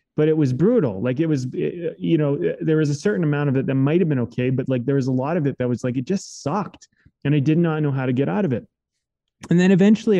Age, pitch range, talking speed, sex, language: 30-49, 130-165 Hz, 295 wpm, male, English